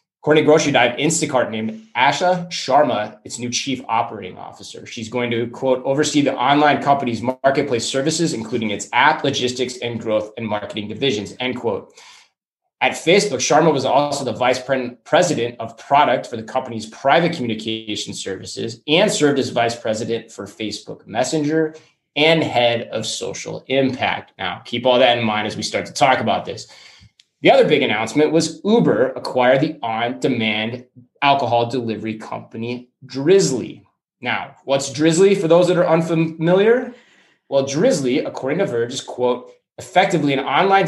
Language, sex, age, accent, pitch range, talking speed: English, male, 20-39, American, 115-155 Hz, 155 wpm